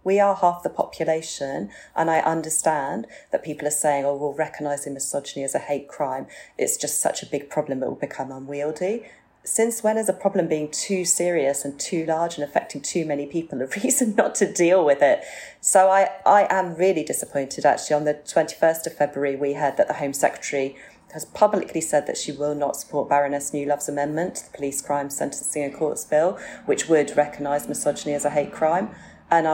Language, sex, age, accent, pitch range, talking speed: English, female, 30-49, British, 145-170 Hz, 200 wpm